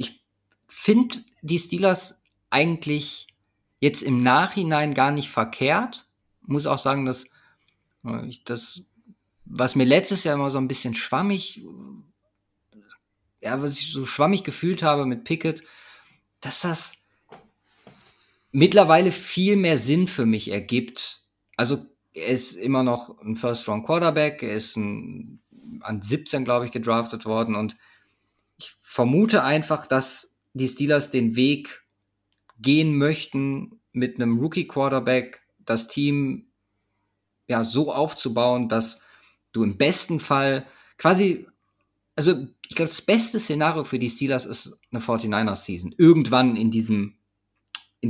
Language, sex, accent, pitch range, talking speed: German, male, German, 115-155 Hz, 125 wpm